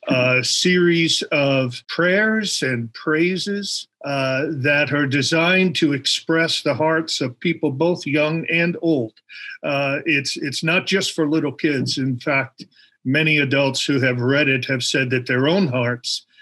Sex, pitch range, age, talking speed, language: male, 130-165 Hz, 50-69, 155 wpm, English